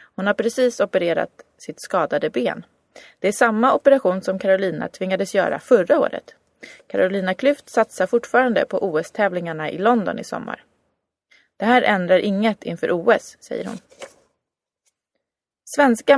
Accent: native